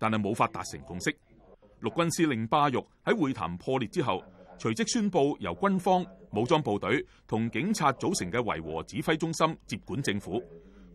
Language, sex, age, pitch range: Chinese, male, 30-49, 110-165 Hz